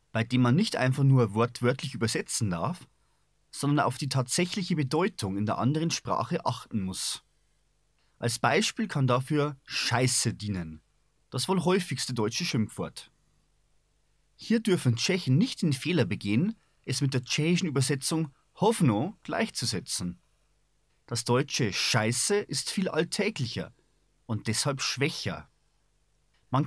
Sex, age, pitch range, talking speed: male, 30-49, 115-165 Hz, 125 wpm